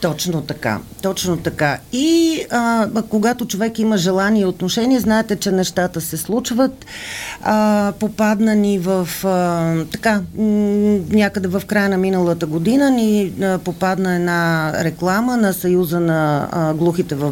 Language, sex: Bulgarian, female